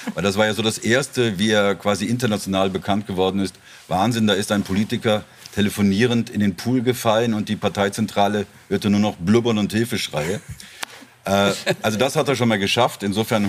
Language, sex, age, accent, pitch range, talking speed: German, male, 50-69, German, 100-115 Hz, 185 wpm